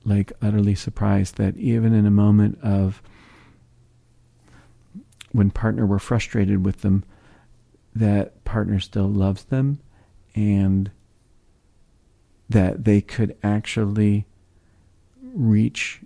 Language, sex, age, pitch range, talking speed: English, male, 50-69, 95-110 Hz, 95 wpm